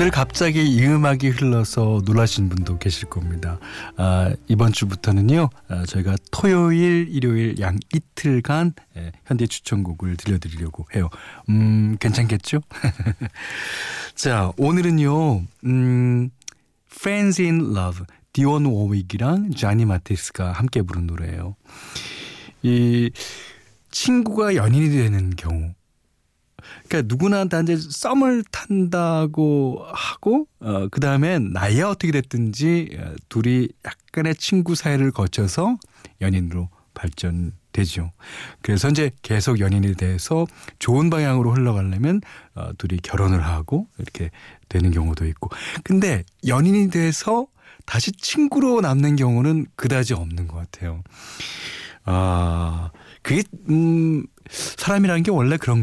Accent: native